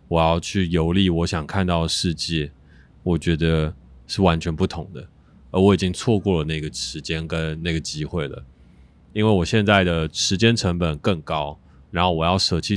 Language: Chinese